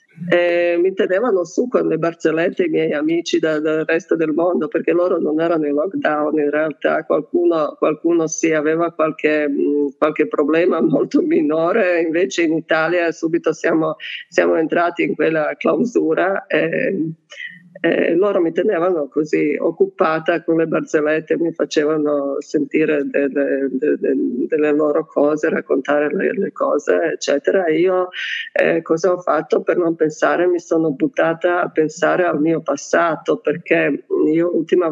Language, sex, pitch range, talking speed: Italian, female, 155-180 Hz, 145 wpm